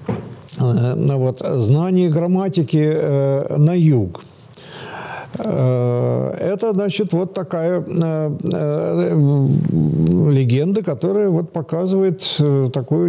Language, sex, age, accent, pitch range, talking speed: Russian, male, 50-69, native, 125-160 Hz, 90 wpm